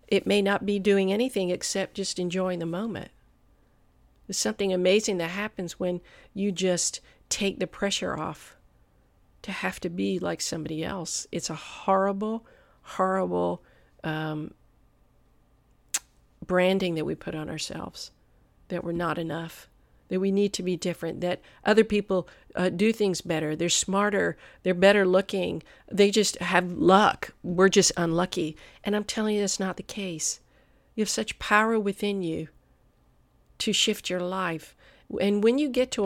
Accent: American